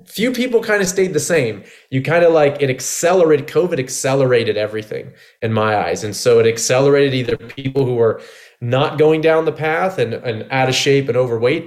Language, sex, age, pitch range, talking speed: English, male, 20-39, 120-150 Hz, 200 wpm